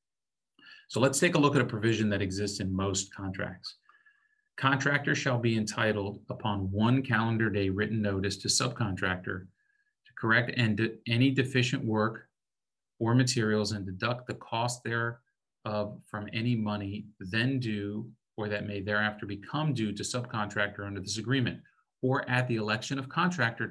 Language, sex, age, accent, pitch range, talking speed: English, male, 40-59, American, 105-125 Hz, 150 wpm